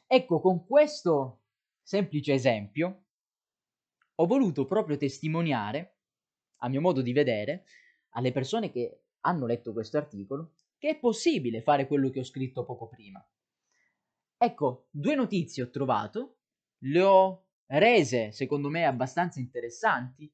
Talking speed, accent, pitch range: 125 wpm, native, 130-185 Hz